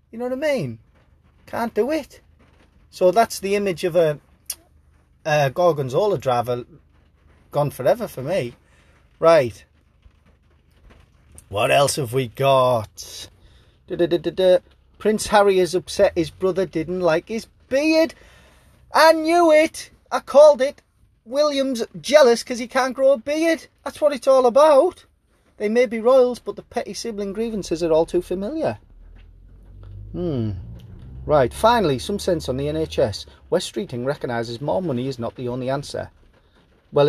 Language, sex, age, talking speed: English, male, 30-49, 150 wpm